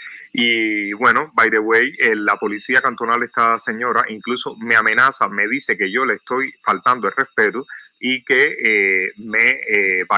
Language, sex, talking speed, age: English, male, 170 wpm, 30-49